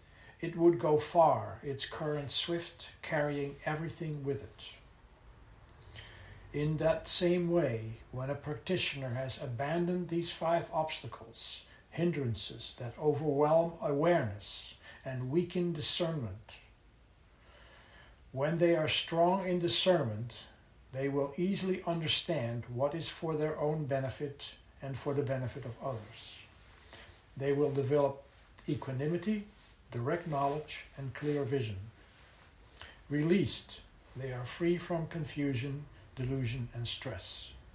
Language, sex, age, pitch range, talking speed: English, male, 60-79, 110-155 Hz, 110 wpm